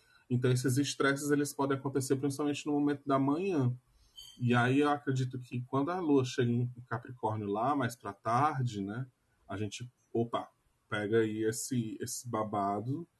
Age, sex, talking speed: 20-39, male, 160 wpm